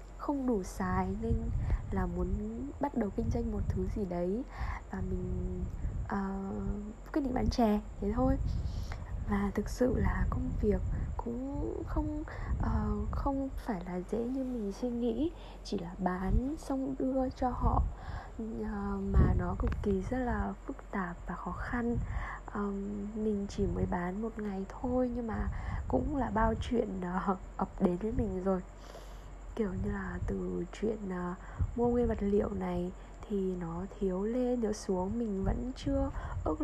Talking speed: 160 wpm